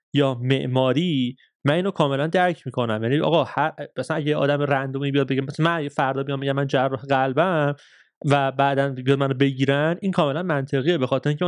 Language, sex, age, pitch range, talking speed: Persian, male, 30-49, 135-165 Hz, 175 wpm